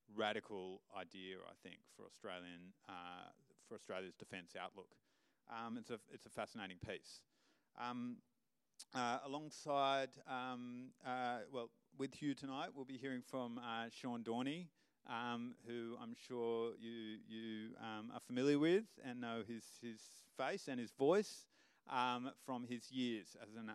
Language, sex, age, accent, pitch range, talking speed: English, male, 30-49, Australian, 105-125 Hz, 150 wpm